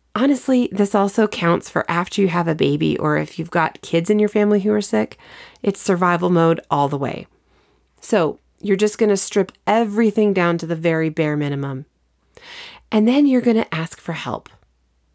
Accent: American